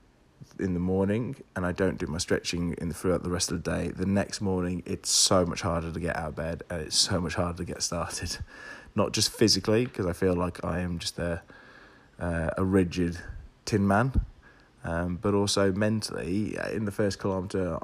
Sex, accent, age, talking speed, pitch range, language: male, British, 20-39, 200 wpm, 90-100 Hz, English